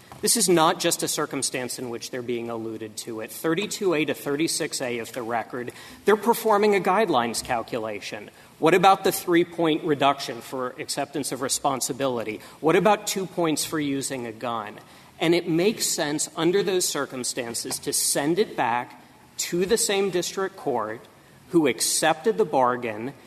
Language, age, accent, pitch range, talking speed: English, 40-59, American, 140-200 Hz, 155 wpm